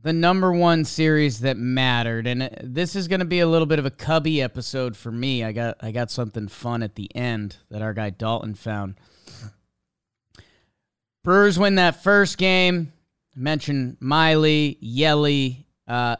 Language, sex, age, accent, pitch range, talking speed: English, male, 30-49, American, 120-165 Hz, 160 wpm